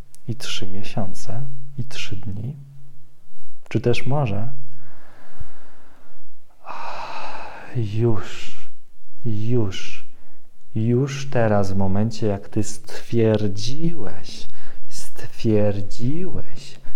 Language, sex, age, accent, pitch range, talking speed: Polish, male, 40-59, native, 105-130 Hz, 70 wpm